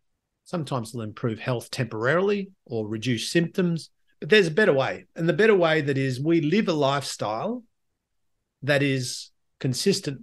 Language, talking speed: English, 155 wpm